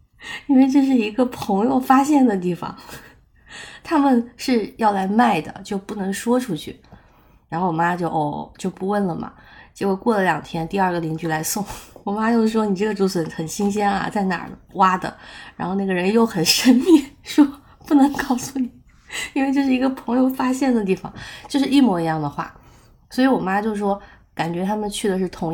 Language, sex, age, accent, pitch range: Chinese, female, 20-39, native, 180-240 Hz